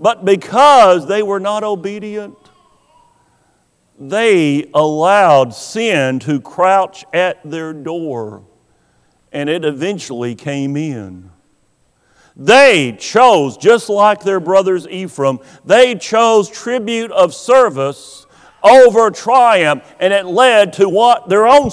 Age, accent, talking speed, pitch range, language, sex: 50-69, American, 110 wpm, 160-225 Hz, English, male